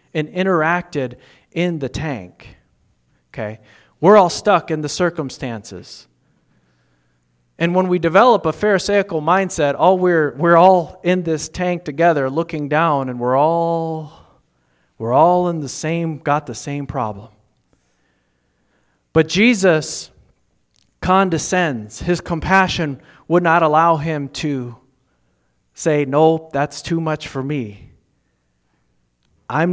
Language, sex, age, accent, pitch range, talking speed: English, male, 40-59, American, 110-165 Hz, 120 wpm